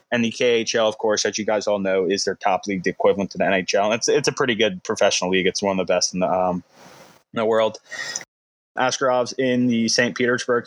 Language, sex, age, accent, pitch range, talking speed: English, male, 20-39, American, 100-120 Hz, 235 wpm